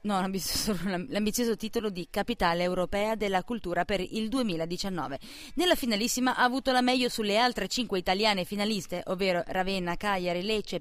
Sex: female